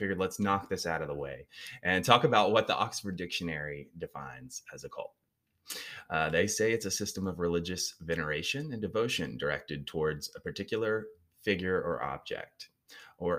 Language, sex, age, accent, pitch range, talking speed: English, male, 20-39, American, 80-105 Hz, 170 wpm